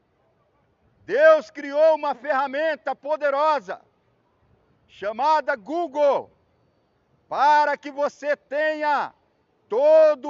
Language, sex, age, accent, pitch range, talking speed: Portuguese, male, 50-69, Brazilian, 280-310 Hz, 70 wpm